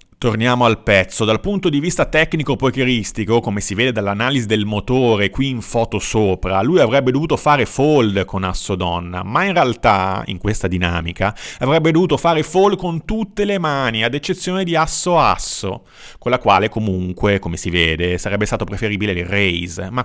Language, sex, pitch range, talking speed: Italian, male, 95-140 Hz, 175 wpm